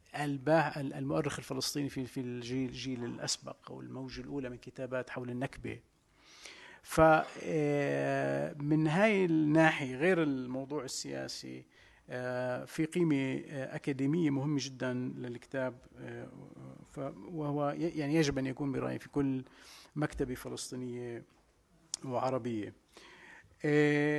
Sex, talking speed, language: male, 90 wpm, English